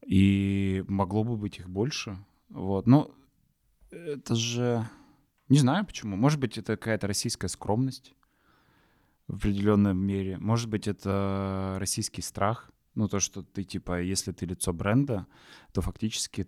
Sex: male